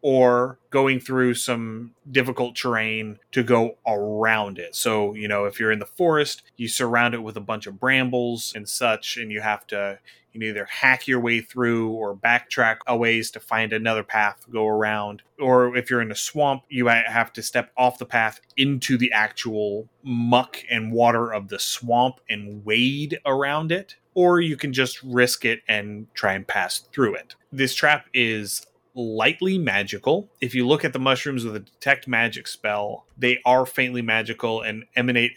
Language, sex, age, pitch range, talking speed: English, male, 30-49, 110-130 Hz, 185 wpm